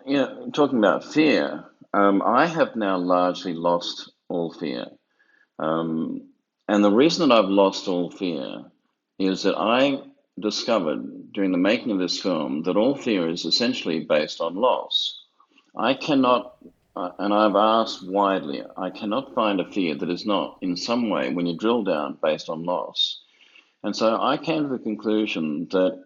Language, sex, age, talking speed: English, male, 50-69, 170 wpm